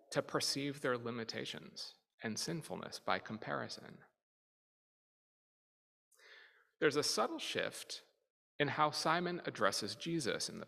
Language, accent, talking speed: English, American, 105 wpm